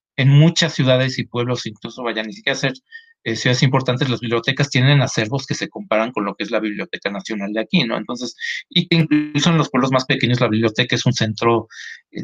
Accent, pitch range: Mexican, 120-160 Hz